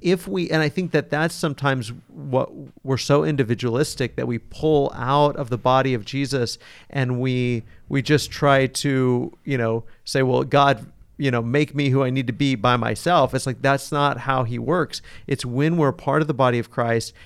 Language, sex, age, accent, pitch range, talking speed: English, male, 40-59, American, 125-150 Hz, 205 wpm